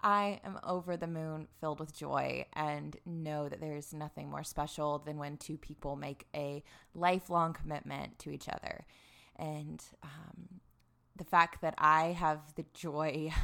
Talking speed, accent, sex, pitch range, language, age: 155 wpm, American, female, 145-175 Hz, English, 20-39